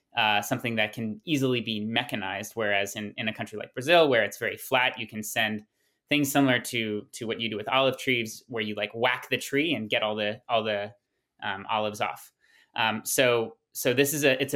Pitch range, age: 110-130 Hz, 20-39